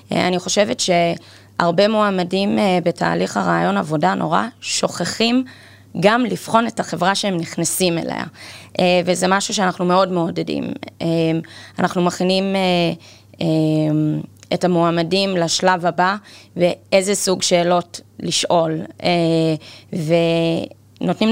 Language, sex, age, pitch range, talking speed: Hebrew, female, 20-39, 160-195 Hz, 90 wpm